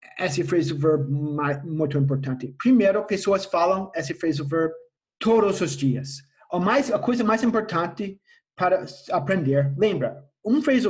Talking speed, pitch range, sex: 140 wpm, 155-215 Hz, male